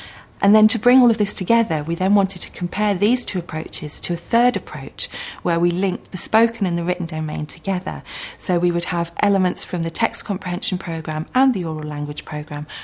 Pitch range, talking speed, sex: 155-190 Hz, 210 wpm, female